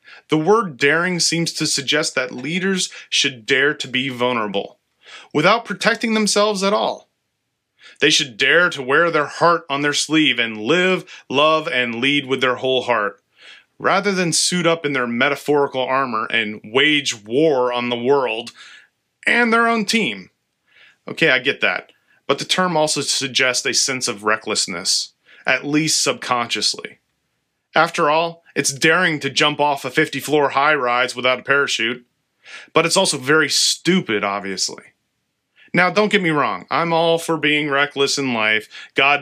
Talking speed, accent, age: 160 wpm, American, 30-49